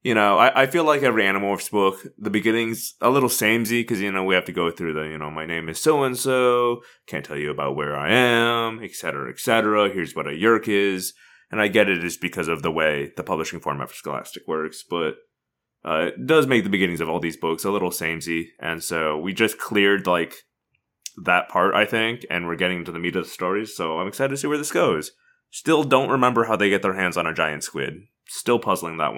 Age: 20-39